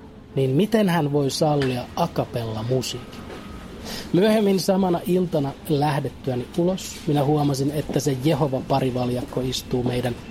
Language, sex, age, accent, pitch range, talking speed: Finnish, male, 30-49, native, 125-165 Hz, 115 wpm